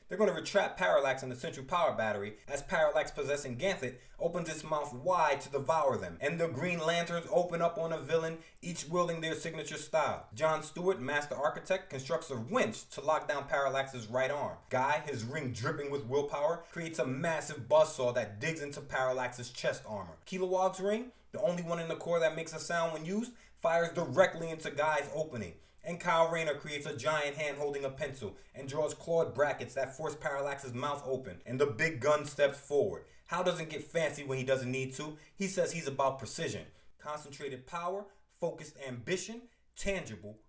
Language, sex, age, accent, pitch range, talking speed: English, male, 30-49, American, 140-170 Hz, 190 wpm